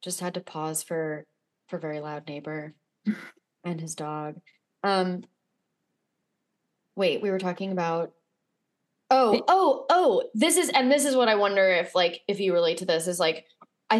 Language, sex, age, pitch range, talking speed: English, female, 20-39, 180-215 Hz, 165 wpm